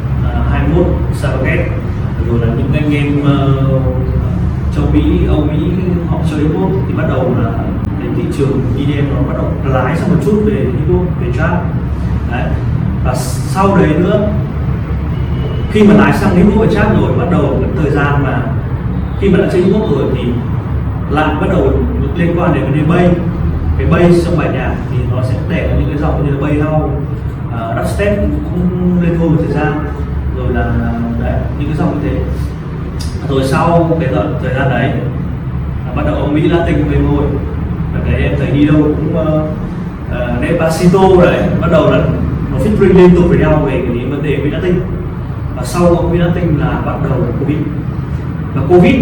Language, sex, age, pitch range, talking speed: Vietnamese, male, 20-39, 120-160 Hz, 190 wpm